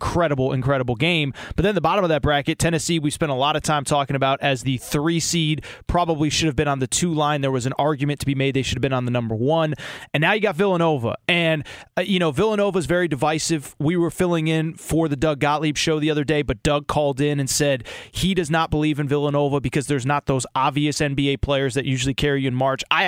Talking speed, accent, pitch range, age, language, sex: 250 wpm, American, 140-165 Hz, 20-39, English, male